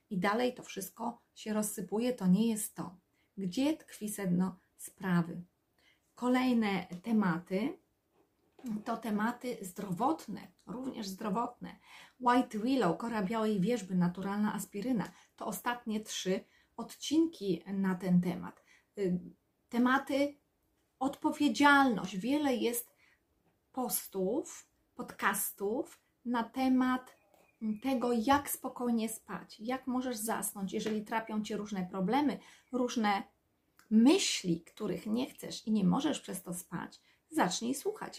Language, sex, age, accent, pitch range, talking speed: Polish, female, 30-49, native, 190-245 Hz, 105 wpm